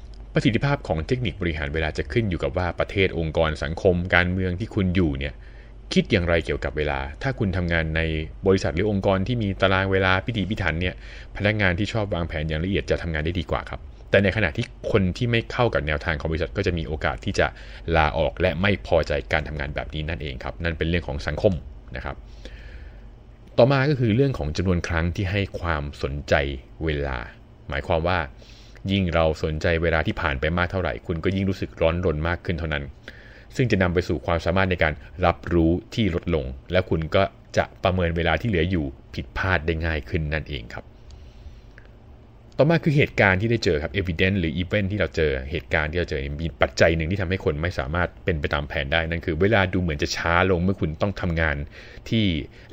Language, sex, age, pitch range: Thai, male, 20-39, 80-100 Hz